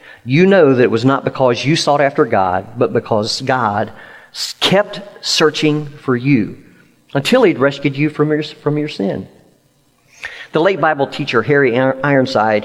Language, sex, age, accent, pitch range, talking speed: English, male, 50-69, American, 140-180 Hz, 150 wpm